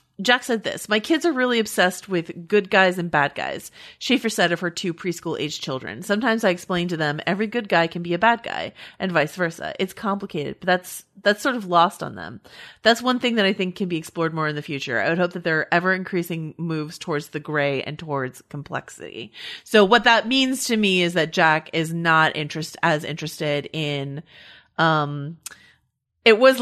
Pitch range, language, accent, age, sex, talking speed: 160-220 Hz, English, American, 30-49, female, 210 wpm